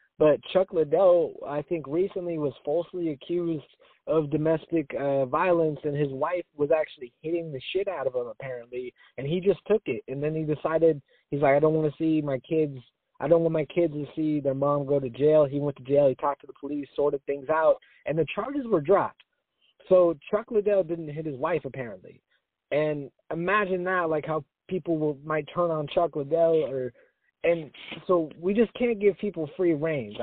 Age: 20-39